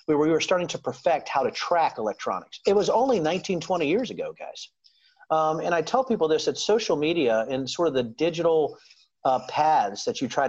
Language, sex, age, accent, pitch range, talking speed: English, male, 40-59, American, 140-215 Hz, 210 wpm